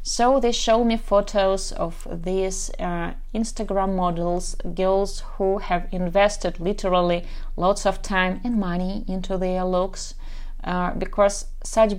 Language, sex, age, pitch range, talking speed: English, female, 30-49, 185-220 Hz, 130 wpm